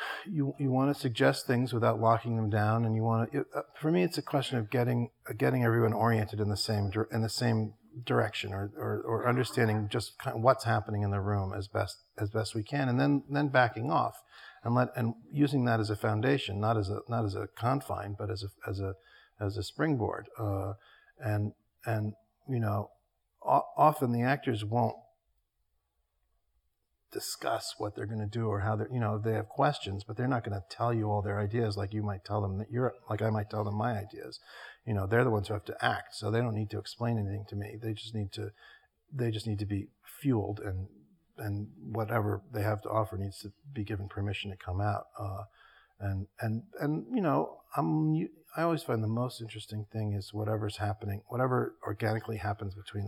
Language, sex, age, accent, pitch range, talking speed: English, male, 50-69, American, 105-120 Hz, 215 wpm